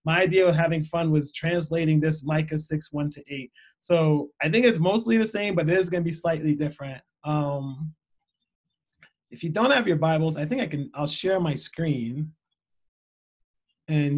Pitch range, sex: 145-175 Hz, male